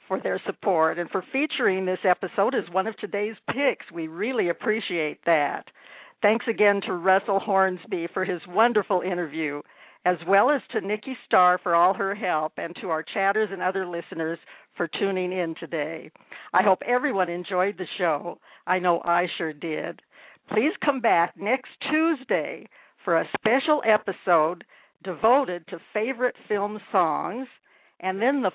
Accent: American